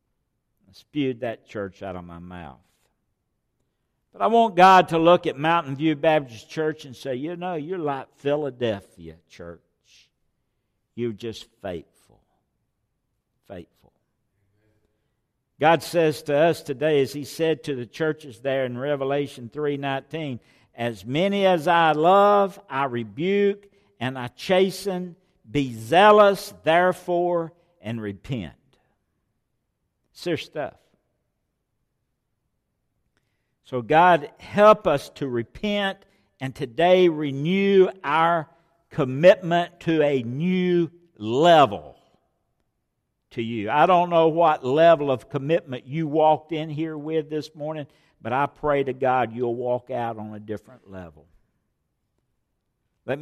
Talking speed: 120 wpm